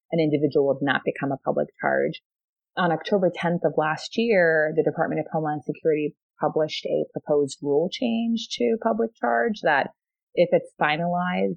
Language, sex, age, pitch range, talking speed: English, female, 30-49, 150-185 Hz, 160 wpm